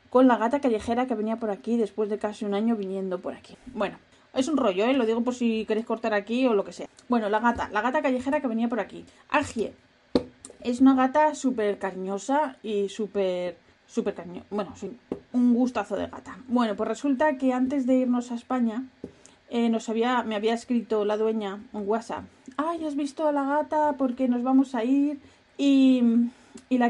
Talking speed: 205 wpm